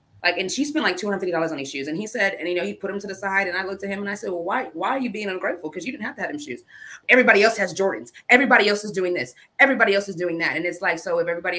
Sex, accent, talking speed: female, American, 330 wpm